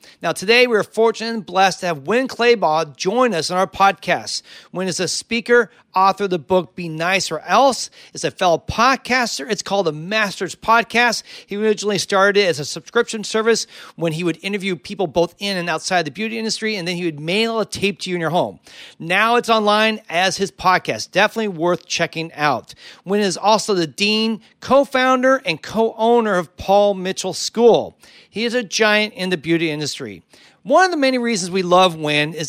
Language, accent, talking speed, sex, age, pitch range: English, American, 200 wpm, male, 40-59, 175-225 Hz